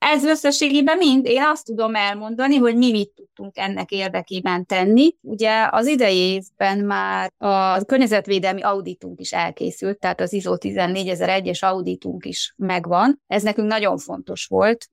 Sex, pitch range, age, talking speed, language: female, 185-225 Hz, 20-39, 140 wpm, Hungarian